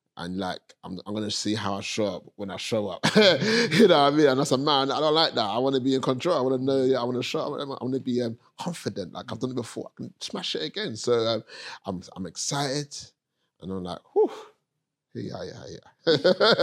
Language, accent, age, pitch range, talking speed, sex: English, British, 30-49, 95-120 Hz, 260 wpm, male